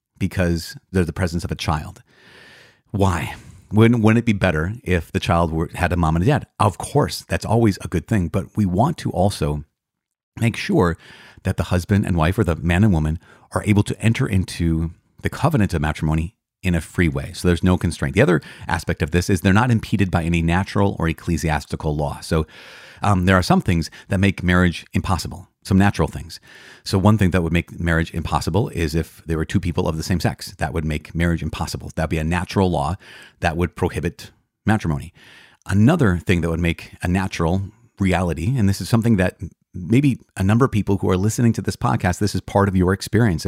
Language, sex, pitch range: English, male, 85-105 Hz